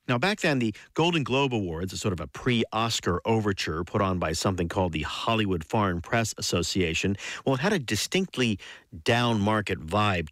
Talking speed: 175 wpm